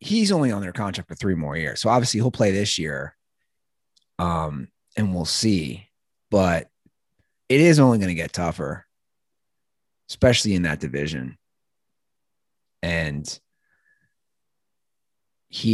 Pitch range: 85-130 Hz